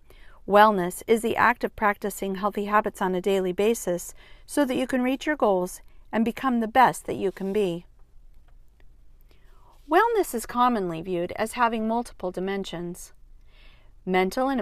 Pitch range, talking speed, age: 190-250 Hz, 150 wpm, 40-59